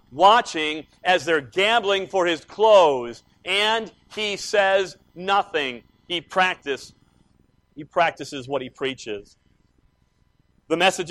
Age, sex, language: 50-69, male, English